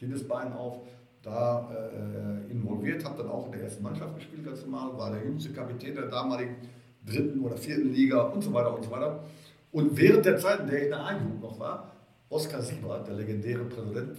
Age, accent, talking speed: 50-69, German, 195 wpm